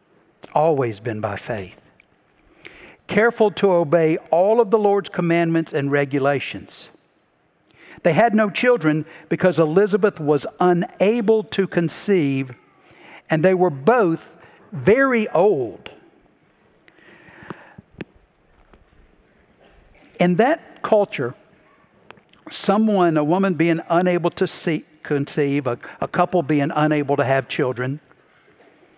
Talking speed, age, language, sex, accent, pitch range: 100 wpm, 60-79, English, male, American, 150-200 Hz